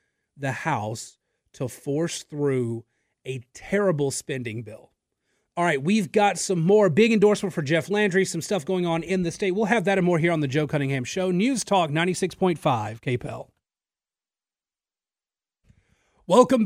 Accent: American